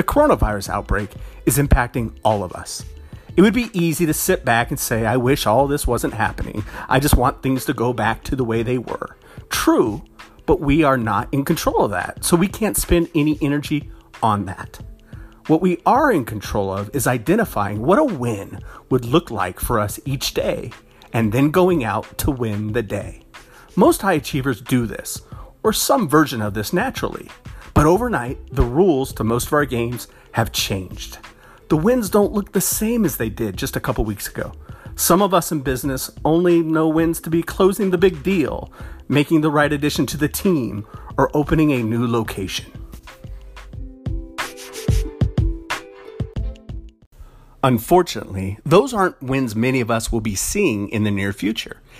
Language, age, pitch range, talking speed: English, 40-59, 105-155 Hz, 180 wpm